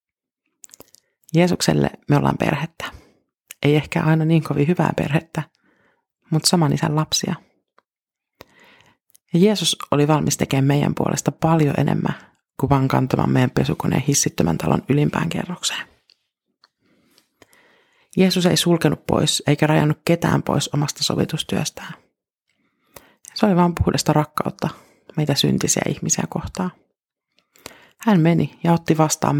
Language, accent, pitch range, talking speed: Finnish, native, 140-175 Hz, 115 wpm